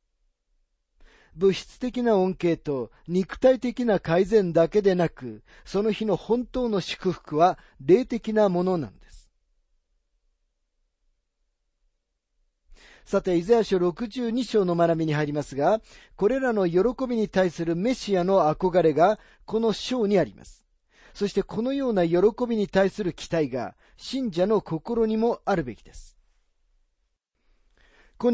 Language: Japanese